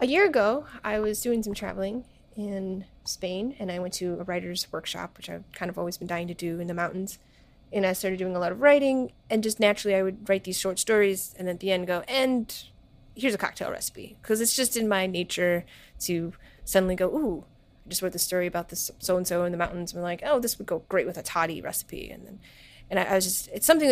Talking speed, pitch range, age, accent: 245 wpm, 185-210 Hz, 30-49, American